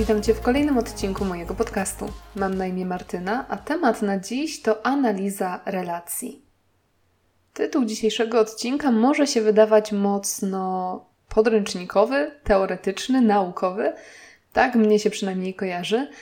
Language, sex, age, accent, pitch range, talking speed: Polish, female, 20-39, native, 195-230 Hz, 120 wpm